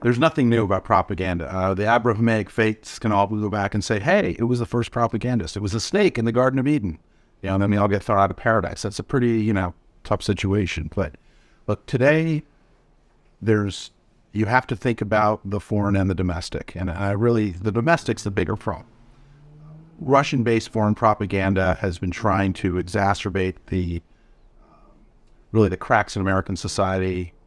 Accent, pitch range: American, 95-115 Hz